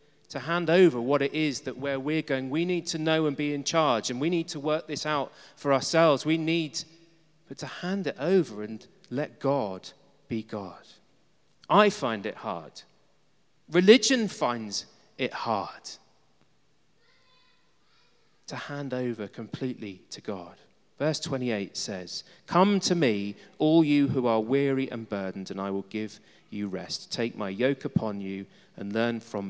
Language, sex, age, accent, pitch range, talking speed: English, male, 30-49, British, 110-160 Hz, 165 wpm